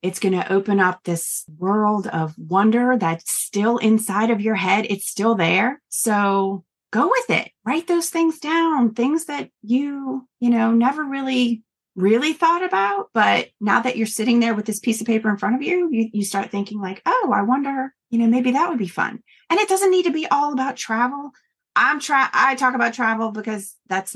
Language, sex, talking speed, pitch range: English, female, 205 wpm, 190-260 Hz